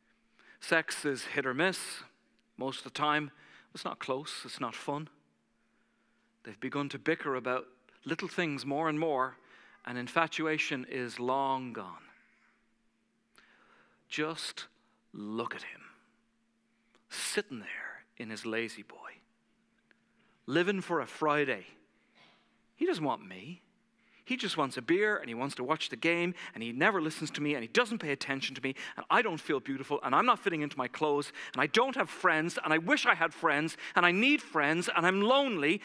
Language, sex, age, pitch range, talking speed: English, male, 40-59, 150-230 Hz, 170 wpm